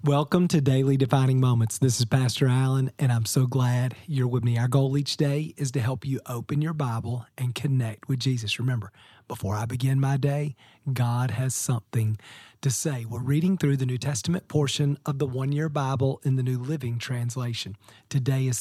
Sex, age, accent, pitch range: male, 40-59, American, 125-160 Hz